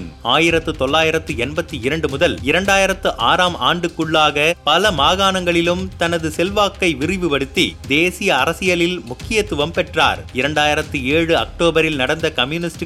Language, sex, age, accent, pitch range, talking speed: Tamil, male, 30-49, native, 155-185 Hz, 100 wpm